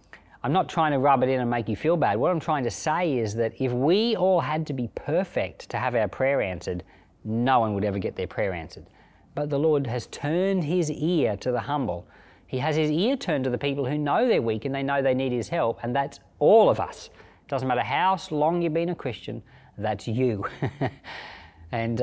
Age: 40-59